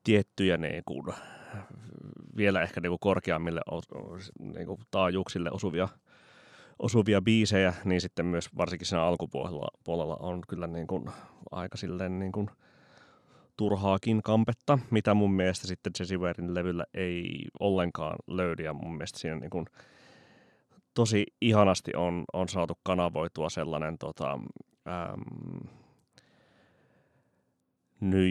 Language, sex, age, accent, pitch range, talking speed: Finnish, male, 30-49, native, 90-105 Hz, 105 wpm